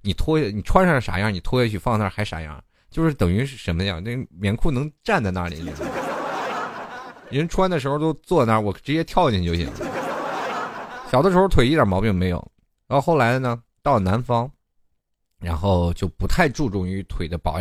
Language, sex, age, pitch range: Chinese, male, 20-39, 85-115 Hz